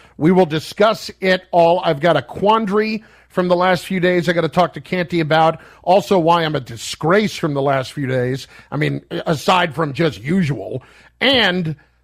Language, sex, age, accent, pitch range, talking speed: English, male, 50-69, American, 155-200 Hz, 190 wpm